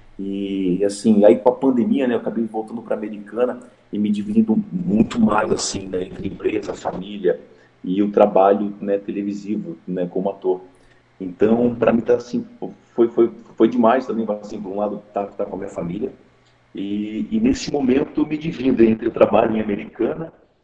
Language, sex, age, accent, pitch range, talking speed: Portuguese, male, 50-69, Brazilian, 100-130 Hz, 185 wpm